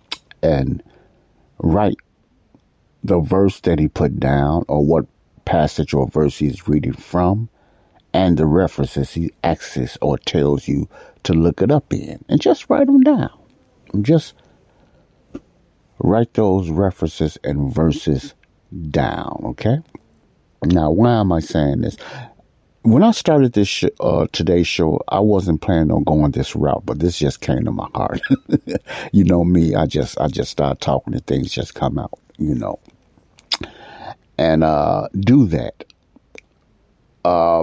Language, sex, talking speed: English, male, 145 wpm